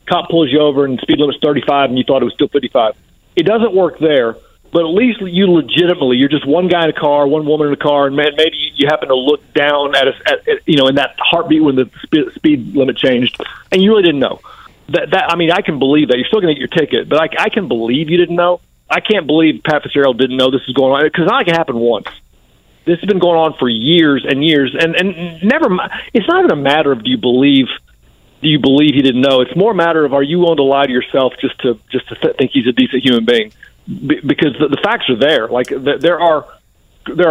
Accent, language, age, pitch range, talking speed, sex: American, English, 40-59, 140-180 Hz, 255 wpm, male